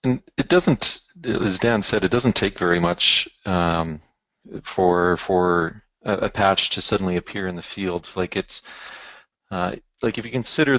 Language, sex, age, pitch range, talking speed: English, male, 40-59, 85-95 Hz, 165 wpm